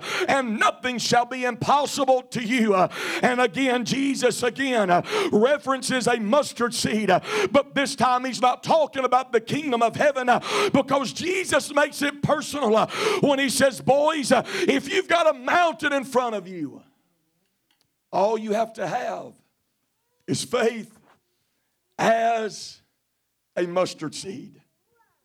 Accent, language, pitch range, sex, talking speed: American, English, 220-275 Hz, male, 130 wpm